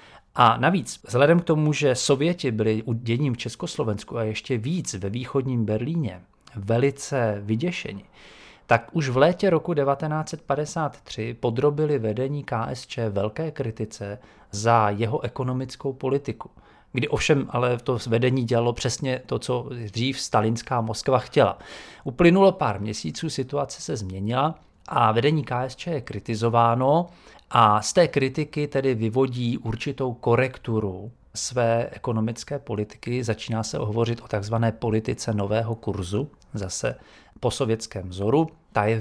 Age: 40-59